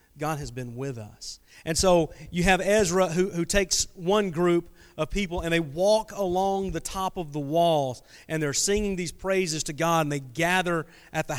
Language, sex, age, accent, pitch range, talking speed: English, male, 40-59, American, 155-195 Hz, 200 wpm